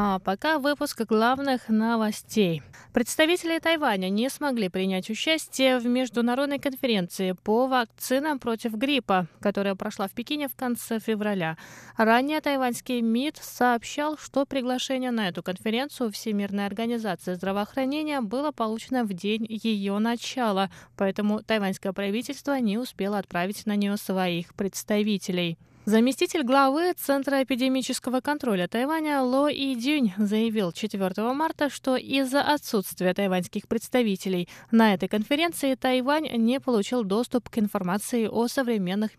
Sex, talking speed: female, 120 wpm